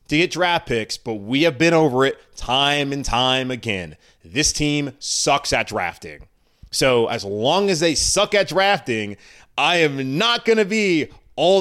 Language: English